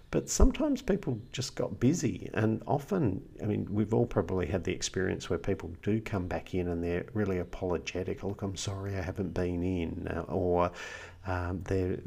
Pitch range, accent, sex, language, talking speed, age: 85-110 Hz, Australian, male, English, 180 wpm, 50-69